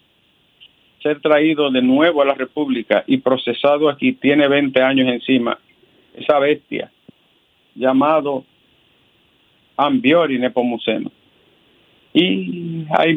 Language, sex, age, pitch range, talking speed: Spanish, male, 50-69, 130-155 Hz, 90 wpm